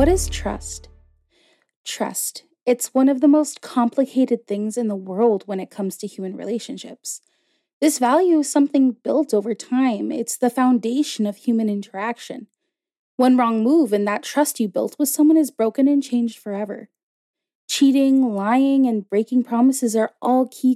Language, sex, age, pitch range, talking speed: English, female, 20-39, 215-275 Hz, 160 wpm